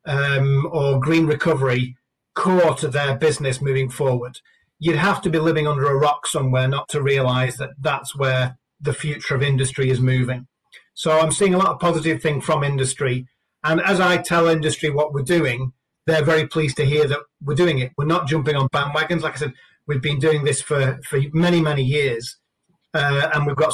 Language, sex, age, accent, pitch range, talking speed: English, male, 40-59, British, 135-155 Hz, 200 wpm